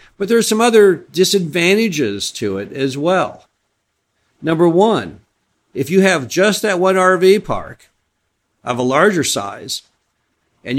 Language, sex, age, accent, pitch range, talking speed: English, male, 50-69, American, 115-155 Hz, 140 wpm